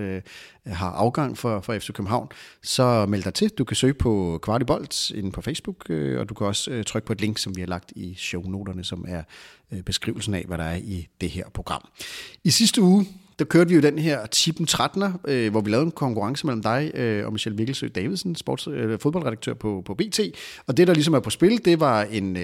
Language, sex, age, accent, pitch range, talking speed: Danish, male, 30-49, native, 105-140 Hz, 210 wpm